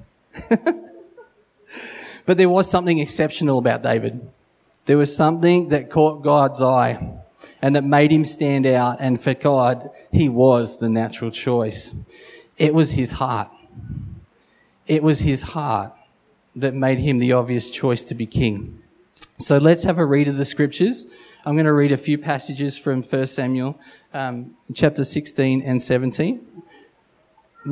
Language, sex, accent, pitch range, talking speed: English, male, Australian, 125-155 Hz, 145 wpm